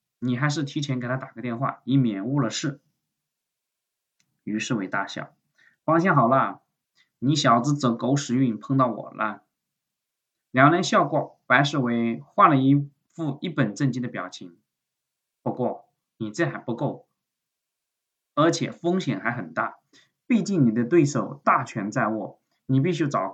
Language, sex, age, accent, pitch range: Chinese, male, 20-39, native, 120-160 Hz